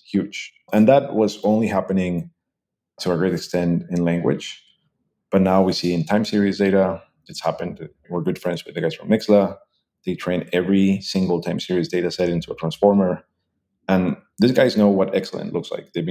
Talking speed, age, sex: 185 wpm, 30-49, male